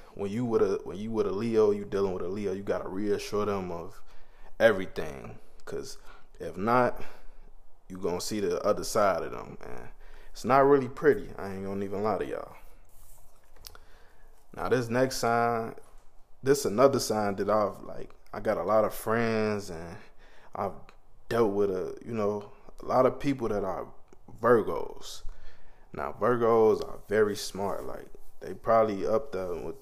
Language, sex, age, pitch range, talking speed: English, male, 20-39, 100-130 Hz, 170 wpm